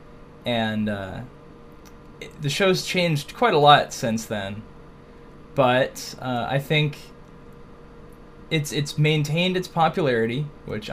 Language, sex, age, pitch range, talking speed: English, male, 10-29, 110-150 Hz, 110 wpm